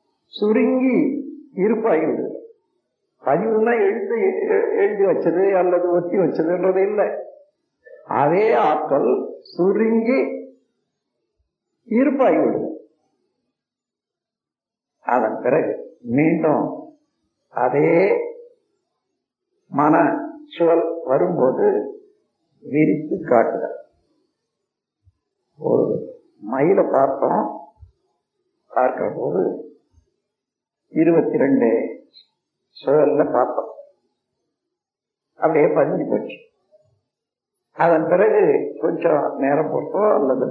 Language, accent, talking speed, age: Tamil, native, 60 wpm, 50-69